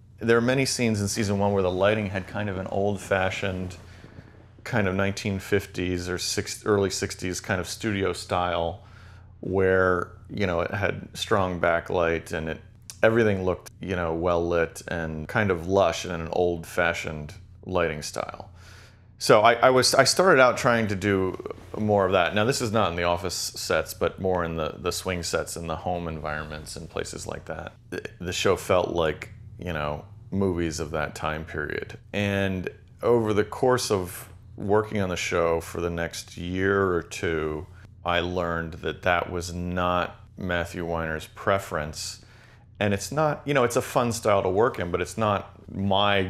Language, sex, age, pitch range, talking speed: English, male, 30-49, 90-105 Hz, 180 wpm